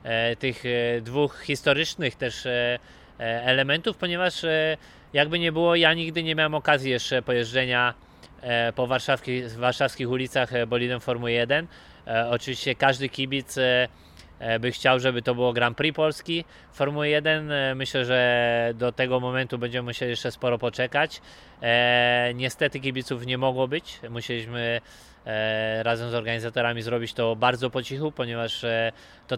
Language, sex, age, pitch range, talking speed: Polish, male, 20-39, 120-135 Hz, 130 wpm